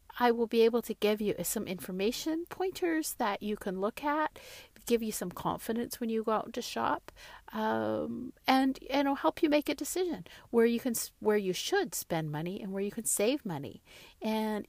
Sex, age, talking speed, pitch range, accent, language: female, 50-69, 190 wpm, 180-235 Hz, American, English